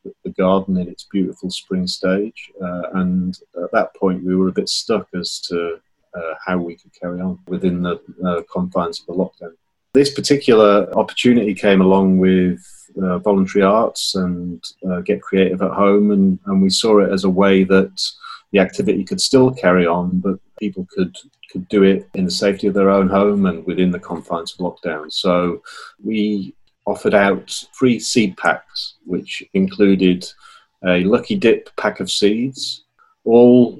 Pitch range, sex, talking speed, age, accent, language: 90-100 Hz, male, 170 wpm, 40-59, British, English